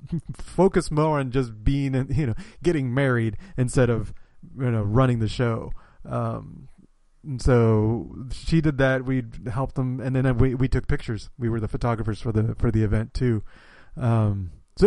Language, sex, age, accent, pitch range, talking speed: English, male, 30-49, American, 110-135 Hz, 175 wpm